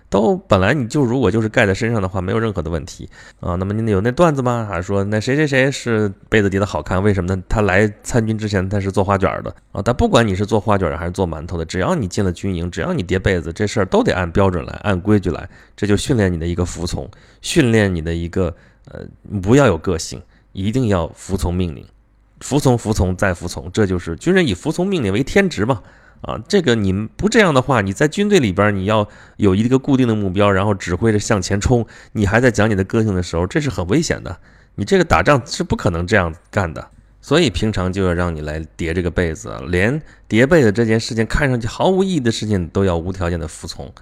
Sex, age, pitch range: male, 20-39, 90-115 Hz